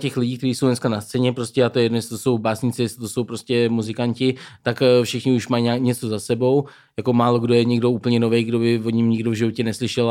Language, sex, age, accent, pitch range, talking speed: Czech, male, 20-39, native, 115-125 Hz, 235 wpm